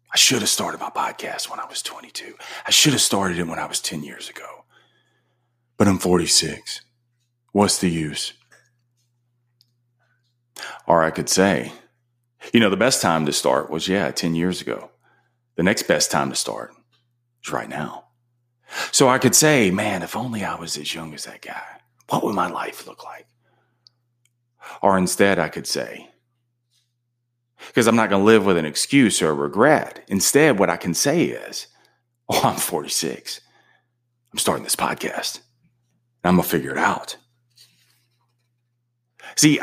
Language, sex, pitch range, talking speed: English, male, 100-120 Hz, 165 wpm